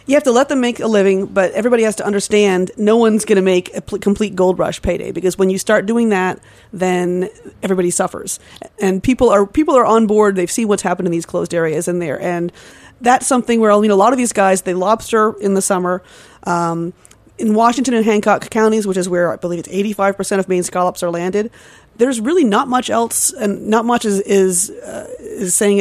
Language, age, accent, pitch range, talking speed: English, 30-49, American, 180-215 Hz, 225 wpm